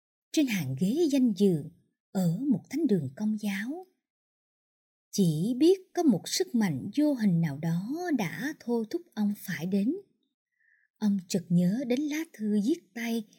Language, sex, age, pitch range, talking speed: Vietnamese, male, 20-39, 175-270 Hz, 155 wpm